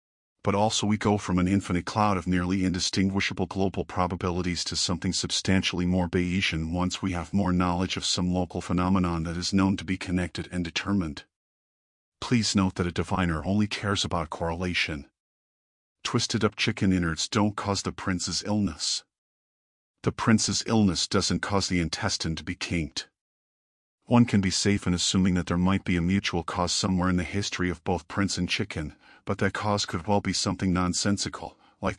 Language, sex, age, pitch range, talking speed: English, male, 40-59, 90-100 Hz, 175 wpm